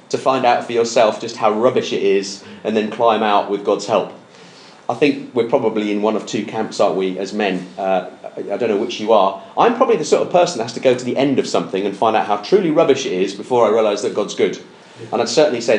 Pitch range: 110-155 Hz